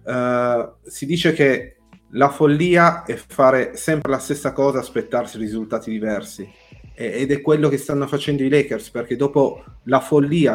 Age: 30-49